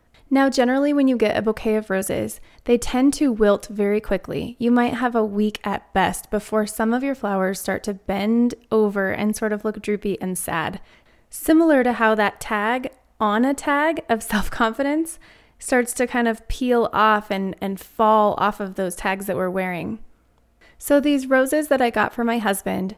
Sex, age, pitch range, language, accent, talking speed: female, 20-39, 200-245 Hz, English, American, 190 wpm